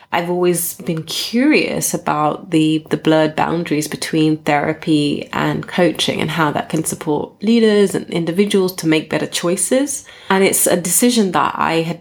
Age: 20-39